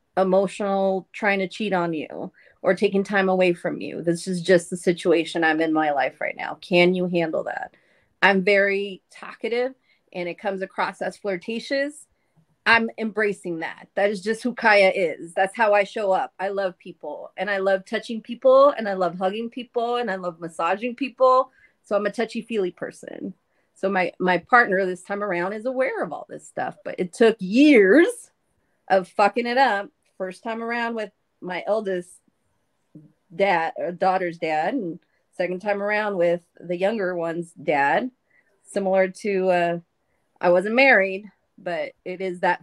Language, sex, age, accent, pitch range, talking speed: English, female, 30-49, American, 175-215 Hz, 170 wpm